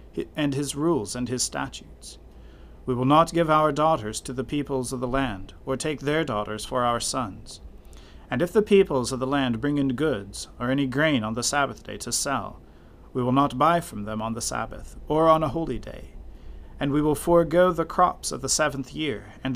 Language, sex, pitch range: English, male, 110-150 Hz